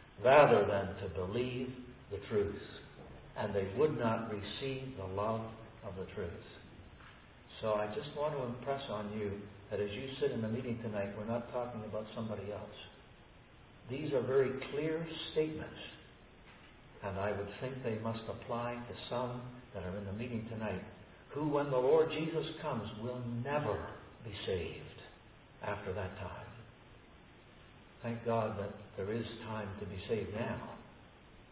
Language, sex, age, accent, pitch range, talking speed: English, male, 60-79, American, 105-130 Hz, 155 wpm